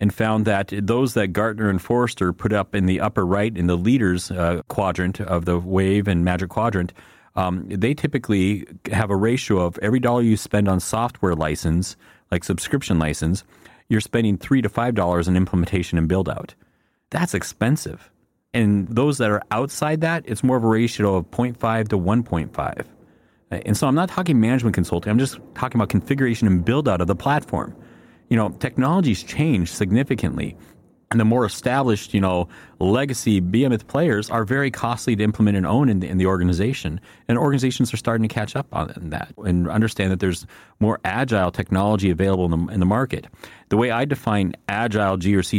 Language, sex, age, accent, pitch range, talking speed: English, male, 40-59, American, 95-120 Hz, 185 wpm